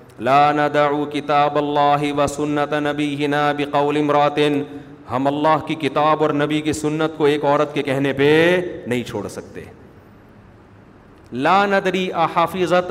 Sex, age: male, 40-59